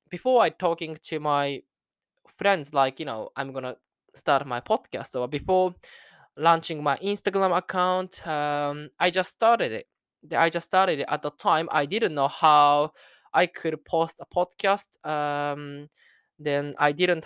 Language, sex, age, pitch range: Japanese, male, 20-39, 140-180 Hz